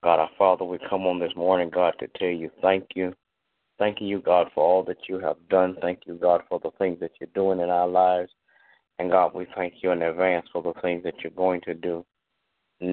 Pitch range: 90-95 Hz